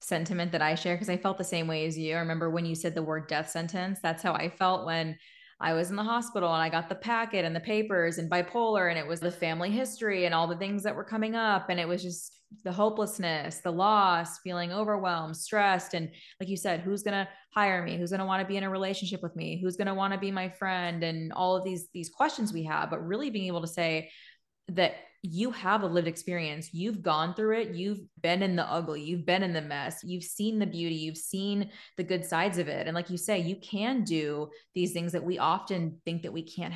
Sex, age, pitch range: female, 20-39, 165-195 Hz